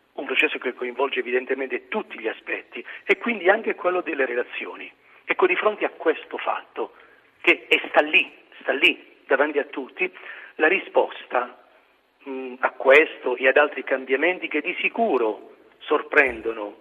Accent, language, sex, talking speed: native, Italian, male, 145 wpm